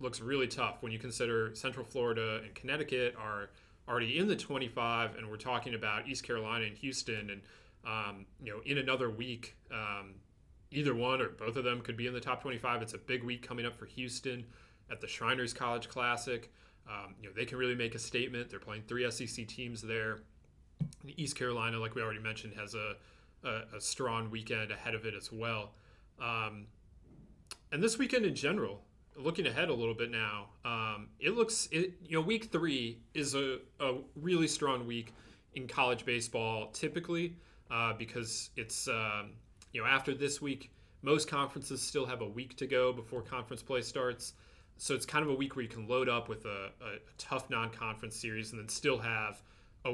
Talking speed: 195 wpm